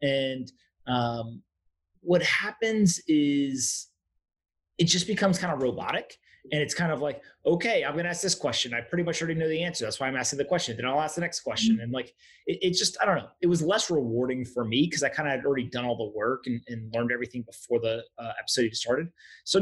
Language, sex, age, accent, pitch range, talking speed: English, male, 30-49, American, 115-155 Hz, 230 wpm